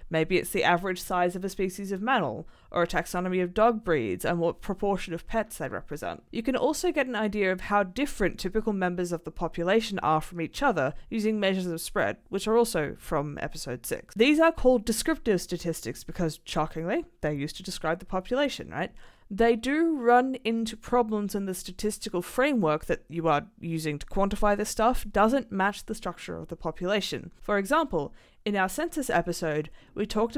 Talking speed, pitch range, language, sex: 190 wpm, 170-230 Hz, English, female